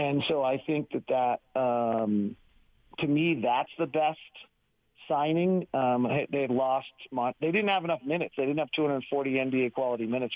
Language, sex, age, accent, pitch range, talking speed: English, male, 50-69, American, 130-170 Hz, 155 wpm